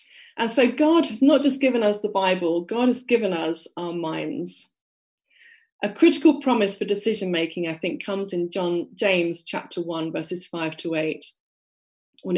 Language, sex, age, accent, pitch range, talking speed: English, female, 30-49, British, 170-245 Hz, 165 wpm